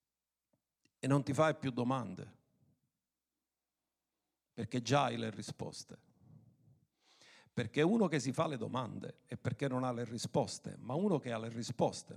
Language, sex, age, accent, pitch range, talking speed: Italian, male, 50-69, native, 130-210 Hz, 150 wpm